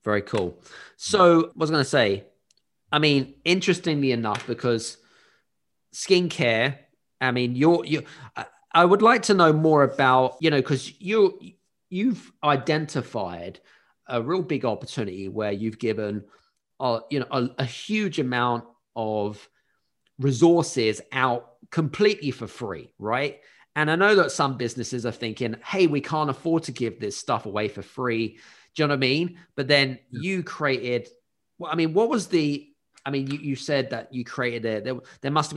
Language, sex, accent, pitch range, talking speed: English, male, British, 120-150 Hz, 165 wpm